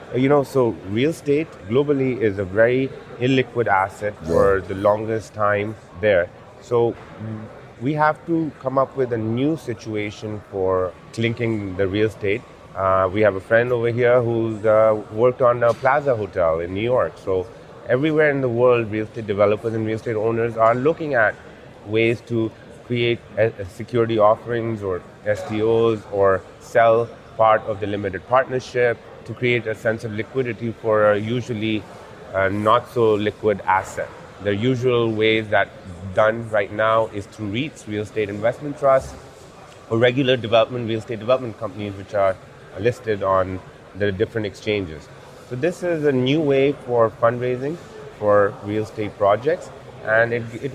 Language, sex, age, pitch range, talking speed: English, male, 30-49, 105-125 Hz, 155 wpm